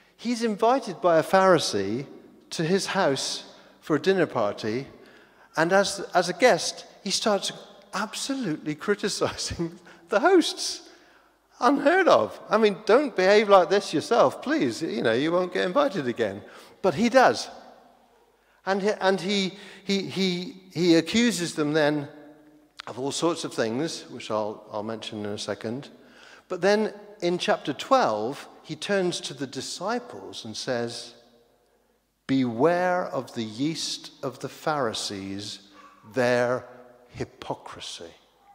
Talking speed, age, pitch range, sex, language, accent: 135 wpm, 50-69, 125-200 Hz, male, English, British